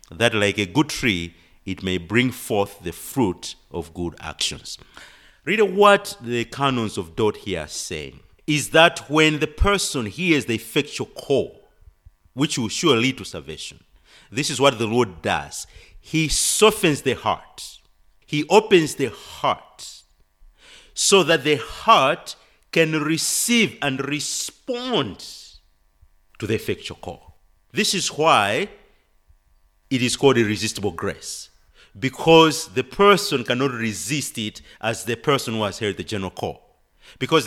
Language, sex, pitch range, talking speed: English, male, 95-155 Hz, 140 wpm